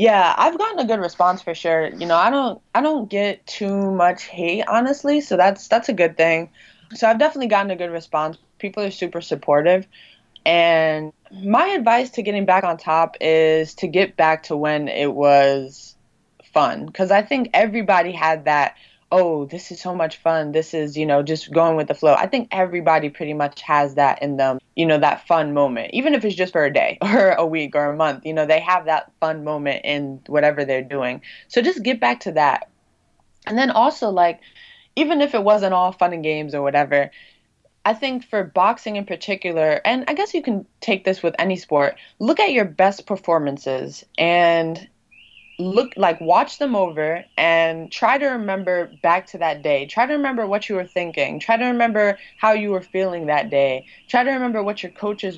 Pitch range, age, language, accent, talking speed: 155-210 Hz, 20-39, English, American, 205 wpm